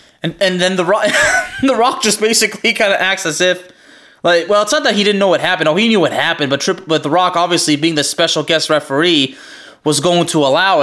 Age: 20-39